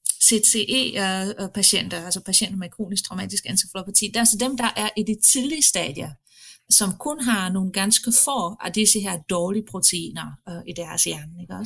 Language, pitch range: Danish, 185-225 Hz